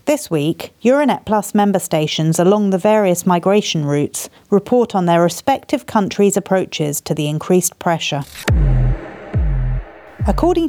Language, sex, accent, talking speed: English, female, British, 125 wpm